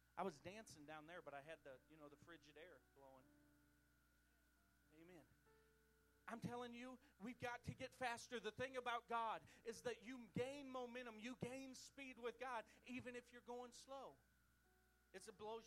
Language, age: English, 40-59